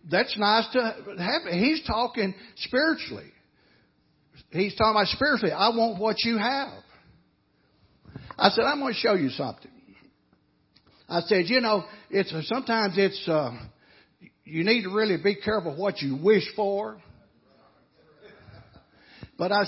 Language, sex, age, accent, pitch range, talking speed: English, male, 60-79, American, 150-215 Hz, 135 wpm